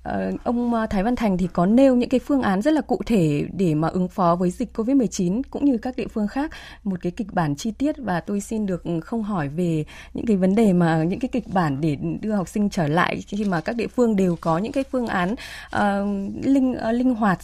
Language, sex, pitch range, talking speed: Vietnamese, female, 175-235 Hz, 240 wpm